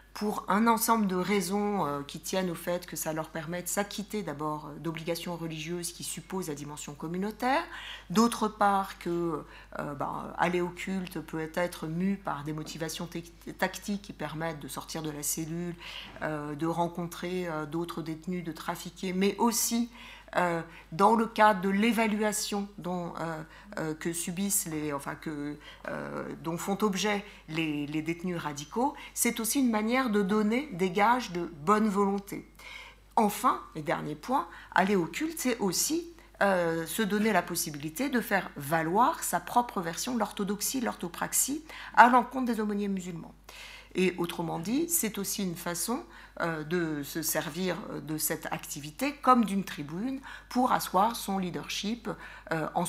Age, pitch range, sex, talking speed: 50-69, 165-215 Hz, female, 160 wpm